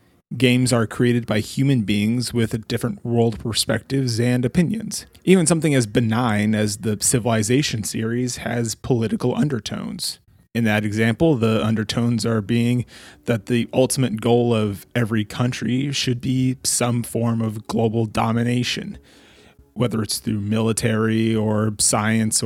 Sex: male